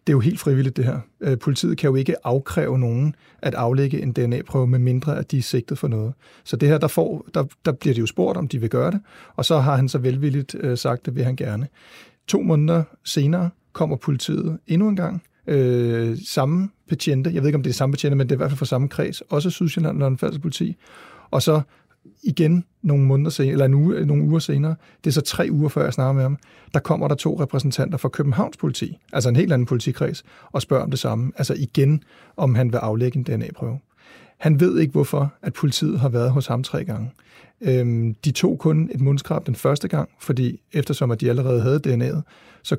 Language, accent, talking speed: Danish, native, 225 wpm